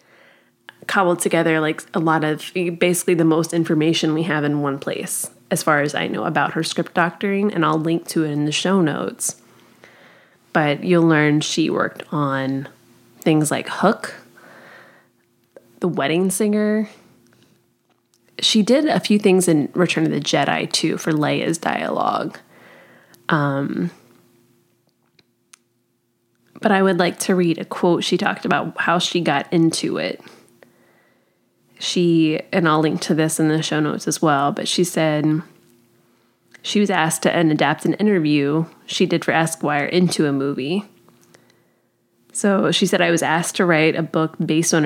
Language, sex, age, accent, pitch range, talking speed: English, female, 20-39, American, 150-180 Hz, 155 wpm